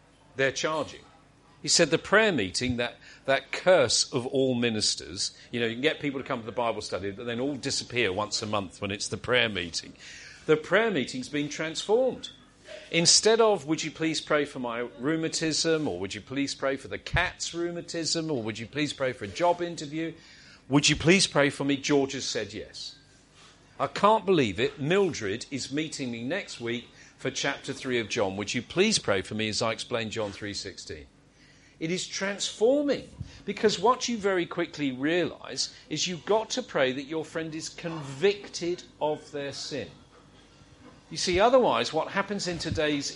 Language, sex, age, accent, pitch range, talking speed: English, male, 40-59, British, 120-170 Hz, 190 wpm